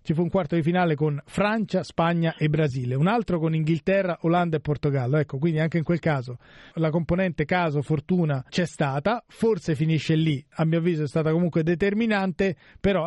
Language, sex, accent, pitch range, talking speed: Italian, male, native, 145-185 Hz, 185 wpm